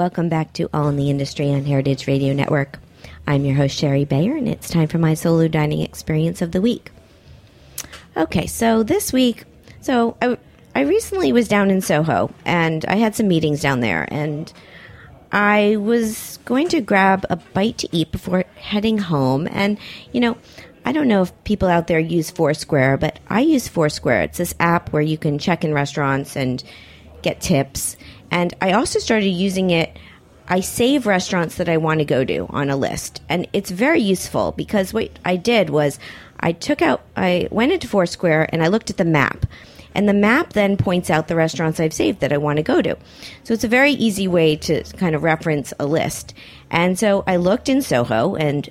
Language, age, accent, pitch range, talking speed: English, 40-59, American, 145-200 Hz, 200 wpm